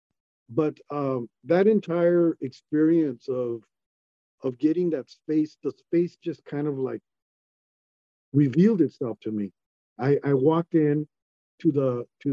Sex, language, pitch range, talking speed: male, English, 120-160 Hz, 130 wpm